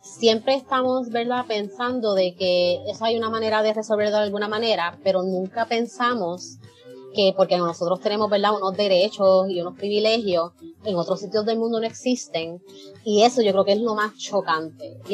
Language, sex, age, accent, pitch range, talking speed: Spanish, female, 30-49, American, 175-210 Hz, 180 wpm